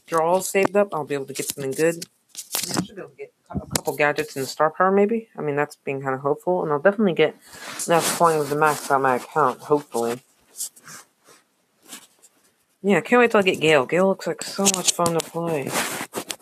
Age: 30-49